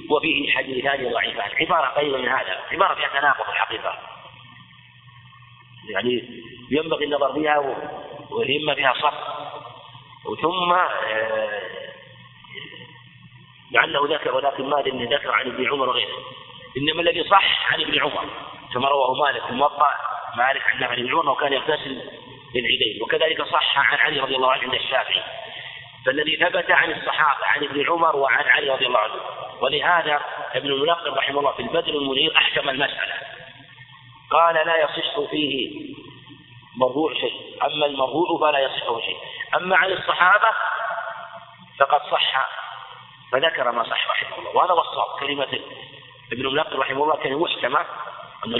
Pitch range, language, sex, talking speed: 130-170 Hz, Arabic, male, 135 wpm